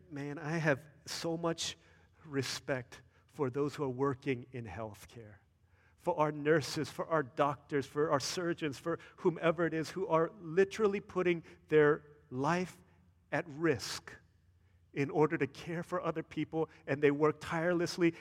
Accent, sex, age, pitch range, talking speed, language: American, male, 40-59, 140-175 Hz, 150 wpm, English